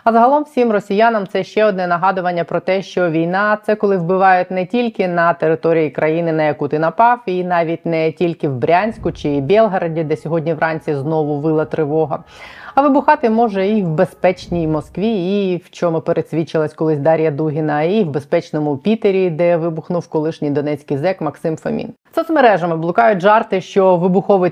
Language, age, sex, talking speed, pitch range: Ukrainian, 20-39, female, 170 wpm, 165-205 Hz